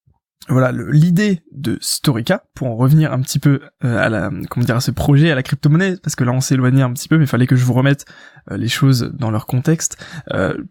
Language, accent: French, French